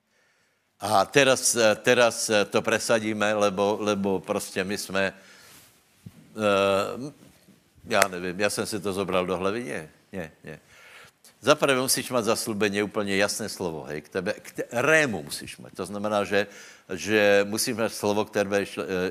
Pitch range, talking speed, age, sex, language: 95-115 Hz, 130 wpm, 70-89, male, Slovak